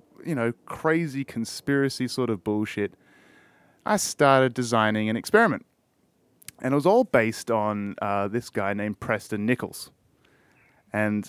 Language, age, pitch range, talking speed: English, 30-49, 105-140 Hz, 135 wpm